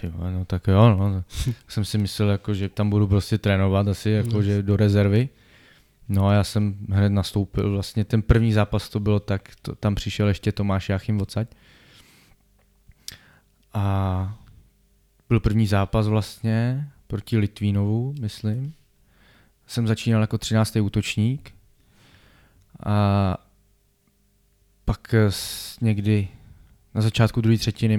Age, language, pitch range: 20-39, Czech, 100-115 Hz